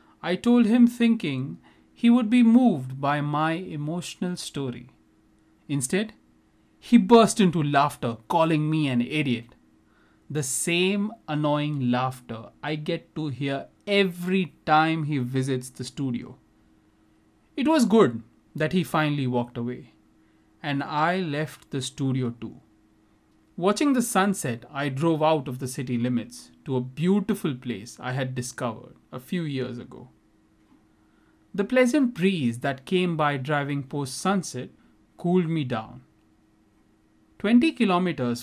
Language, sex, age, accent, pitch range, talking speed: English, male, 30-49, Indian, 120-175 Hz, 130 wpm